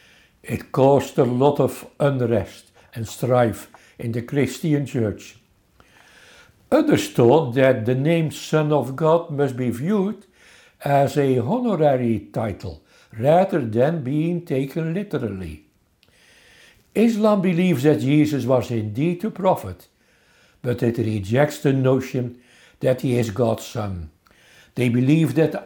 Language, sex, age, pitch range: English, male, 60-79, 125-165 Hz